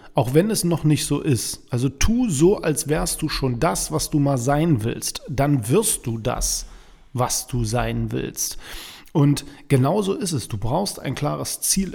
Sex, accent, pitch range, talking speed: male, German, 130-180 Hz, 185 wpm